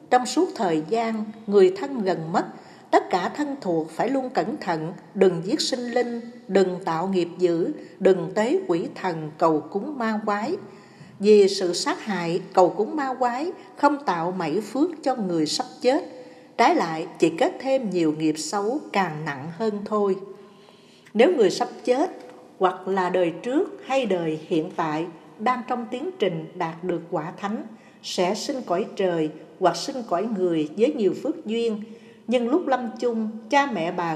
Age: 60-79